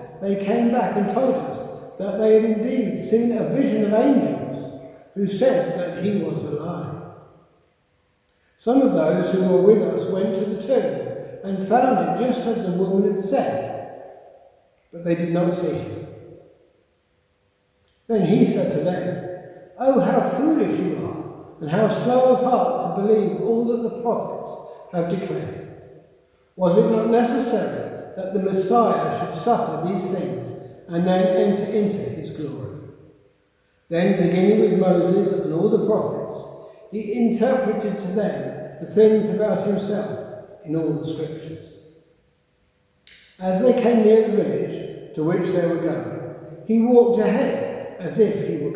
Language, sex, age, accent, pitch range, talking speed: English, male, 60-79, British, 175-225 Hz, 155 wpm